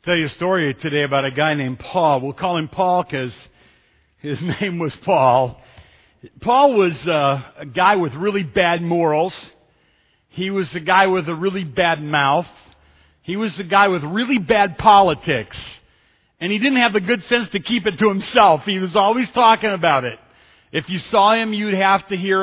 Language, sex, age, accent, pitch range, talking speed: English, male, 50-69, American, 145-195 Hz, 190 wpm